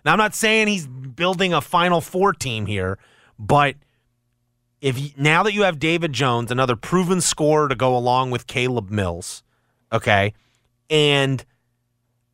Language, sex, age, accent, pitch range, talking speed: English, male, 30-49, American, 120-165 Hz, 150 wpm